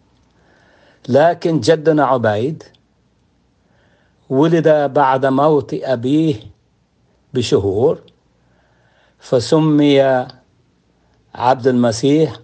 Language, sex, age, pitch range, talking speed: Arabic, male, 60-79, 125-150 Hz, 55 wpm